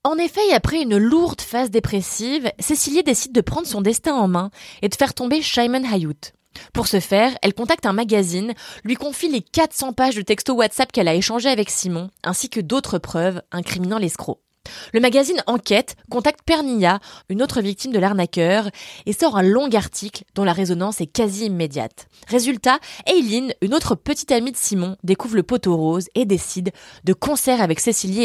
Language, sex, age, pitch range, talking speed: French, female, 20-39, 190-275 Hz, 185 wpm